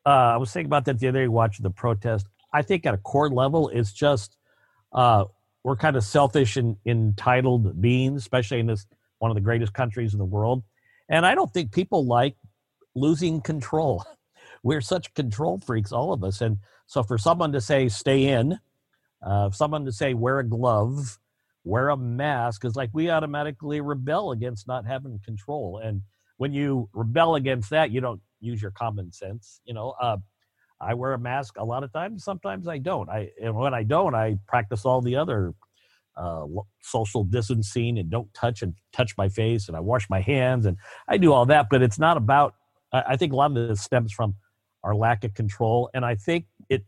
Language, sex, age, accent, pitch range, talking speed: English, male, 50-69, American, 110-140 Hz, 200 wpm